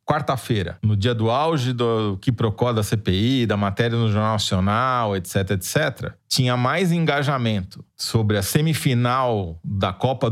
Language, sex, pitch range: Portuguese, male, 105-140 Hz